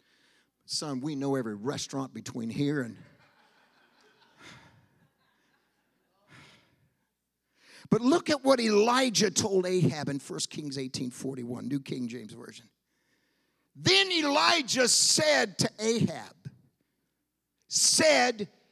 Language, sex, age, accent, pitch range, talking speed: English, male, 50-69, American, 155-265 Hz, 95 wpm